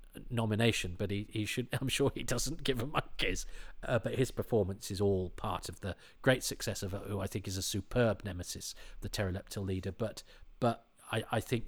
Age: 40-59